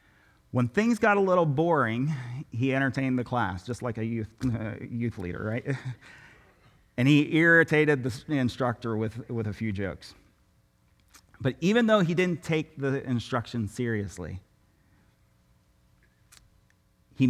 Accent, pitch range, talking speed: American, 105-135 Hz, 130 wpm